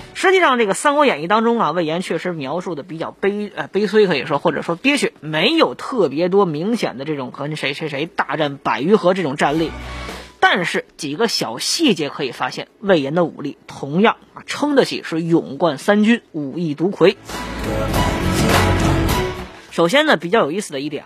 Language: Chinese